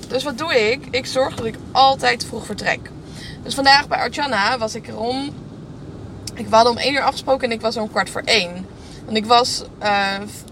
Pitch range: 195-245 Hz